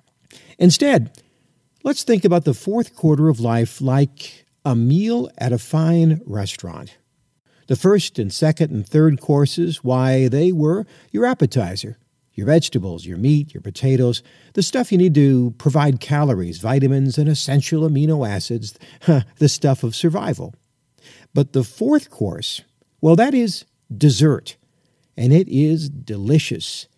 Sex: male